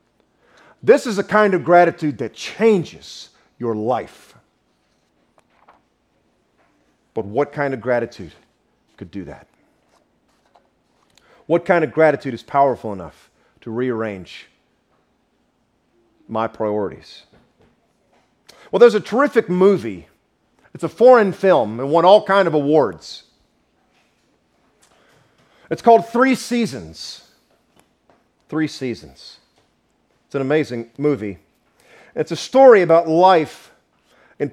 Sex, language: male, English